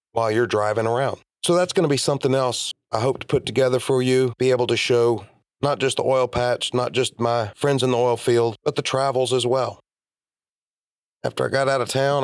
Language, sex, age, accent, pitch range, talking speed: English, male, 30-49, American, 125-140 Hz, 220 wpm